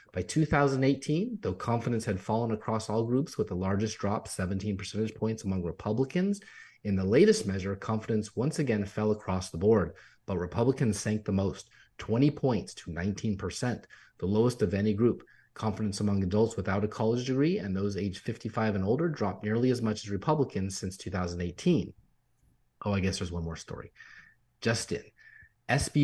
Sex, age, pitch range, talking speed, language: male, 30-49, 100-120 Hz, 170 wpm, English